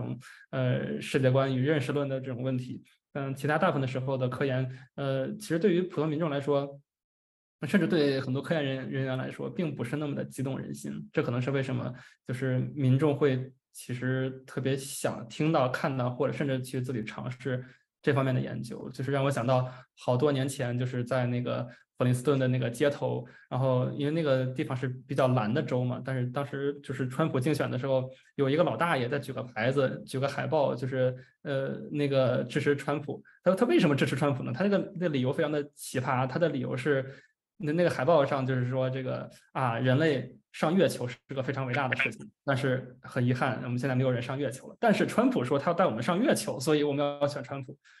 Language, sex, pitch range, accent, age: English, male, 130-145 Hz, Chinese, 20-39